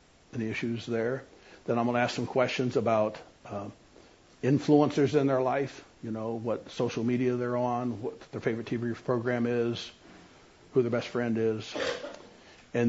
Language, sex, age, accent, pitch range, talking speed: English, male, 60-79, American, 110-130 Hz, 170 wpm